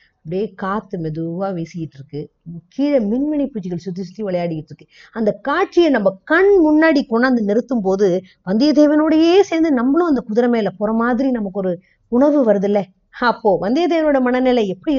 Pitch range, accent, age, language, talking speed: 195-285 Hz, native, 20-39, Tamil, 150 wpm